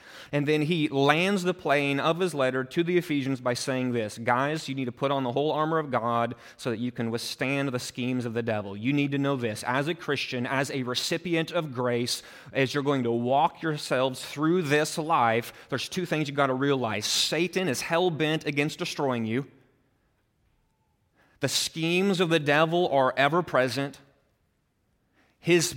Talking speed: 185 wpm